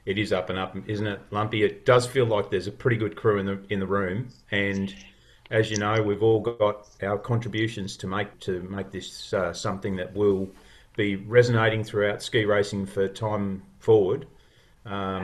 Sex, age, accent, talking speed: male, 40-59, Australian, 195 wpm